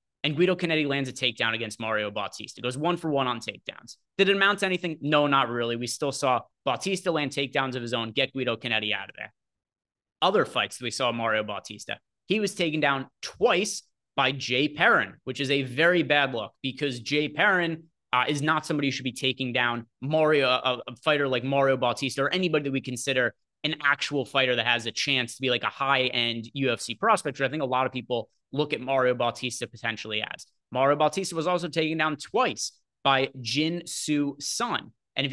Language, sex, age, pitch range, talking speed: English, male, 20-39, 120-155 Hz, 205 wpm